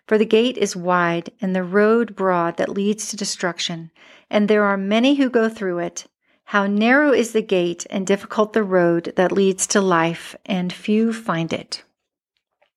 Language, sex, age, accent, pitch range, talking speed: English, female, 40-59, American, 180-225 Hz, 180 wpm